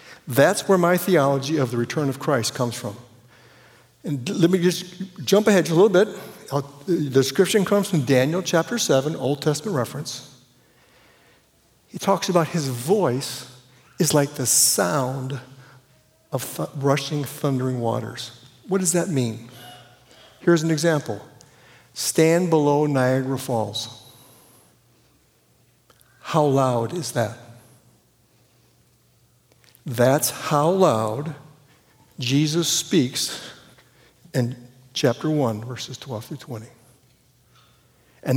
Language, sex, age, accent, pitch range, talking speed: English, male, 60-79, American, 125-165 Hz, 115 wpm